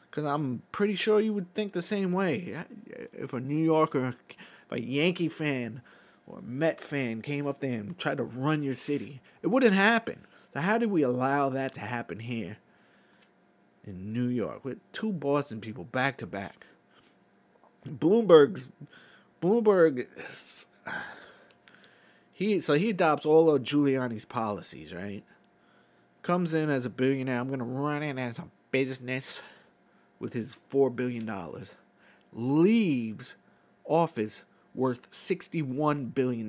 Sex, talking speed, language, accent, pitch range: male, 140 wpm, English, American, 120-160 Hz